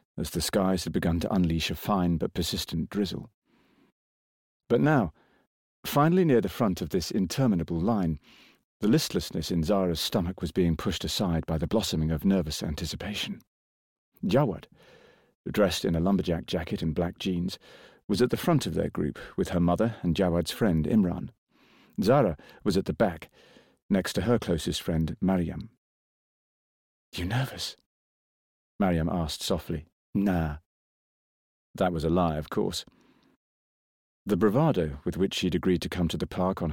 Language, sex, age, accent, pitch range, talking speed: English, male, 40-59, British, 80-100 Hz, 155 wpm